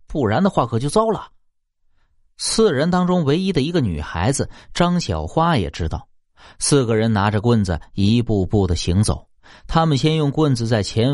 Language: Chinese